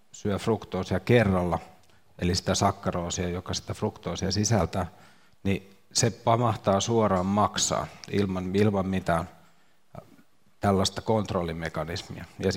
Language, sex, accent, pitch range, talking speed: Finnish, male, native, 90-110 Hz, 105 wpm